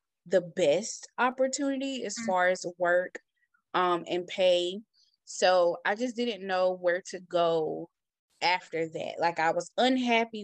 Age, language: 20-39, English